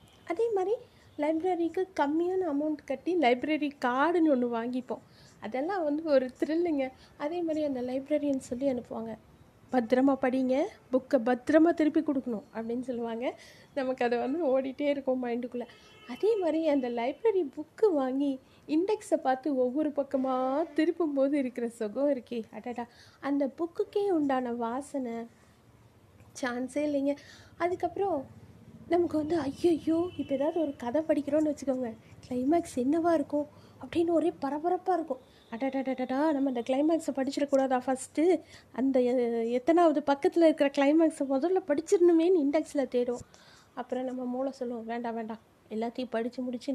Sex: female